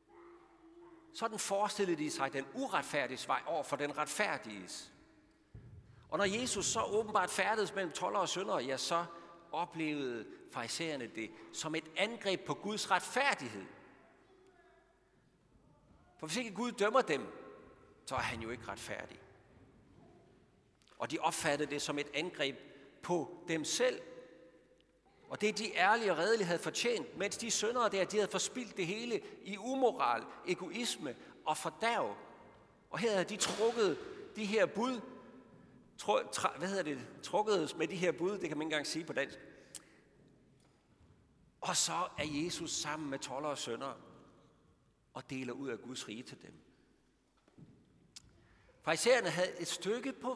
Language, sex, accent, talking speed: Danish, male, native, 150 wpm